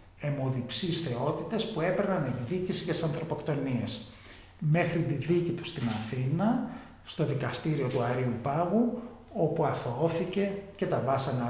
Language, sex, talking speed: English, male, 125 wpm